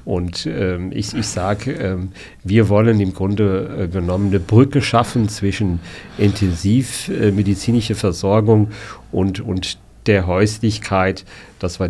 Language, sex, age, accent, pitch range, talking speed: German, male, 50-69, German, 95-110 Hz, 125 wpm